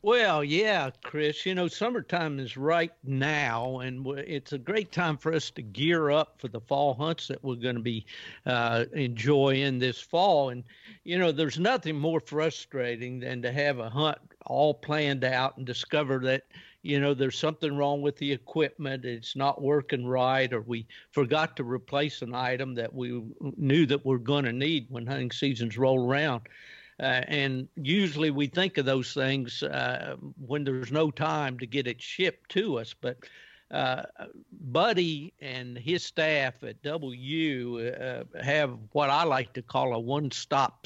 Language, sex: English, male